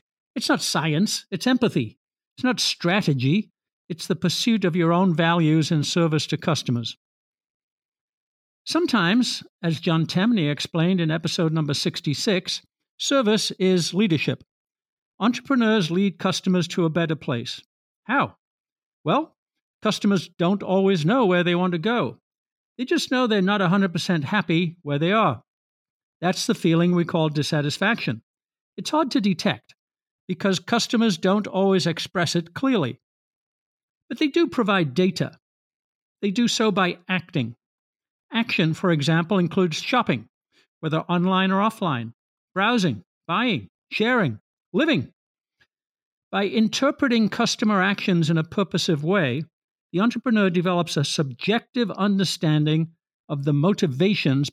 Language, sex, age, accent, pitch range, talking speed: English, male, 60-79, American, 160-210 Hz, 130 wpm